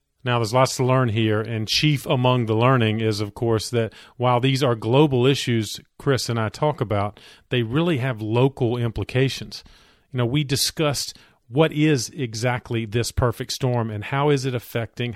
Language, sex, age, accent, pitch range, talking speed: English, male, 40-59, American, 110-135 Hz, 180 wpm